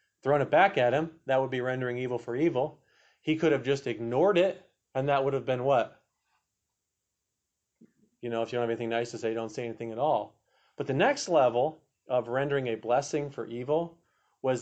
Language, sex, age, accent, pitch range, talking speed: English, male, 40-59, American, 115-145 Hz, 205 wpm